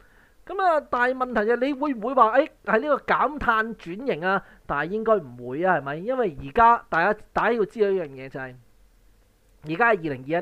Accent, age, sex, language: native, 20-39, male, Chinese